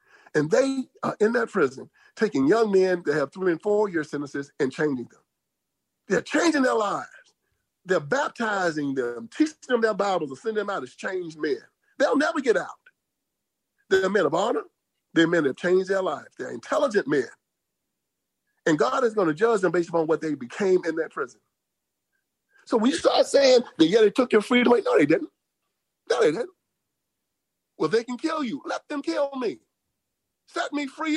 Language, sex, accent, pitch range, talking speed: English, male, American, 190-280 Hz, 190 wpm